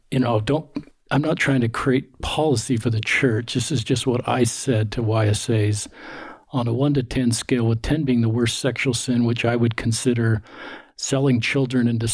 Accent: American